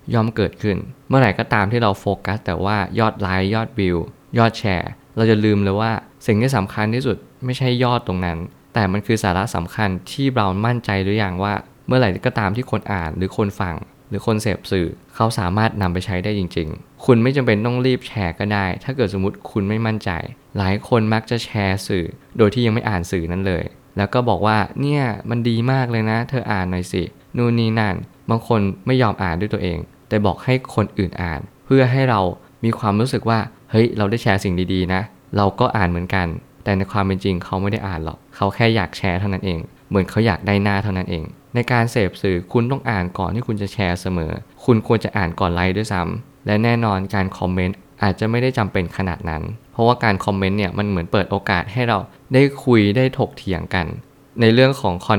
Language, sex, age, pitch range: Thai, male, 20-39, 95-120 Hz